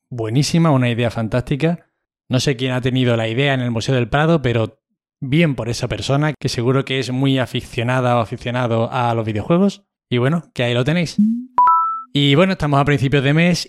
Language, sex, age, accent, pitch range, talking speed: Spanish, male, 20-39, Spanish, 120-145 Hz, 195 wpm